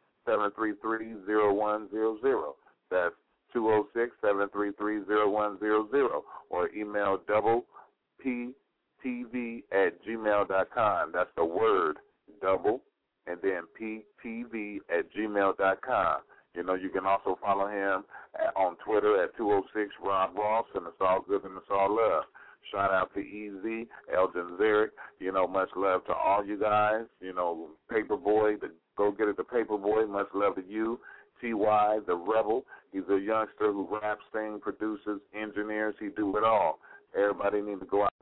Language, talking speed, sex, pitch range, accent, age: English, 180 wpm, male, 100-110 Hz, American, 40-59